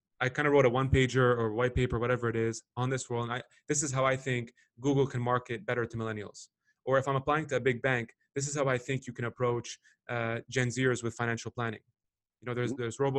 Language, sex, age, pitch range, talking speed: English, male, 20-39, 115-135 Hz, 255 wpm